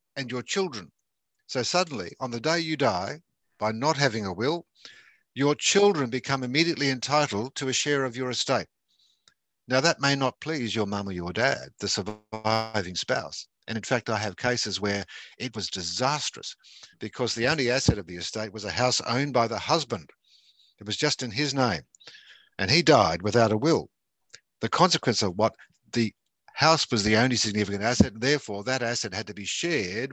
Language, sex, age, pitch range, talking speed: English, male, 50-69, 105-135 Hz, 185 wpm